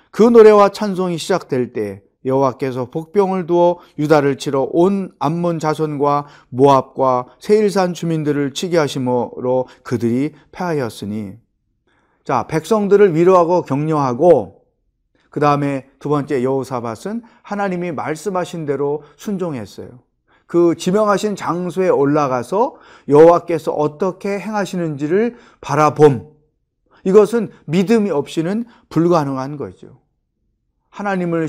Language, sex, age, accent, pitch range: Korean, male, 30-49, native, 130-190 Hz